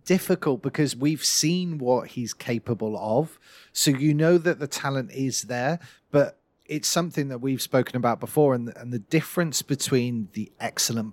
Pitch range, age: 125-170 Hz, 40-59